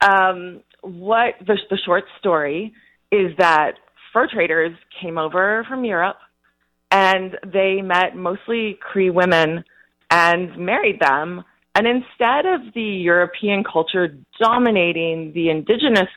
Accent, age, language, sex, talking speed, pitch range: American, 30-49, English, female, 120 wpm, 170-220 Hz